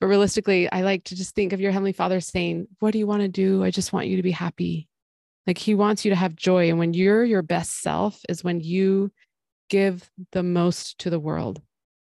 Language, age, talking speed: English, 20-39, 230 wpm